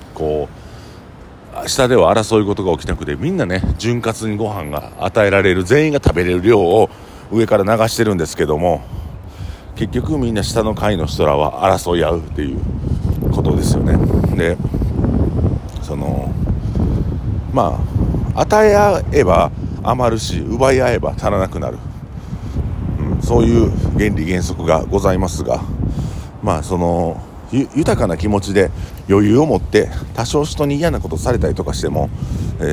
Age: 50-69